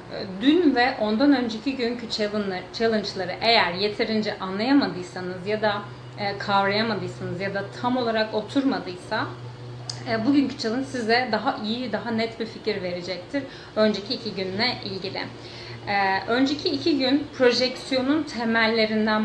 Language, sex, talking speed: Turkish, female, 110 wpm